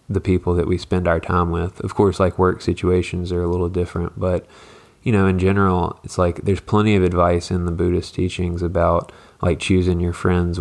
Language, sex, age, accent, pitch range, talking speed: English, male, 20-39, American, 90-100 Hz, 210 wpm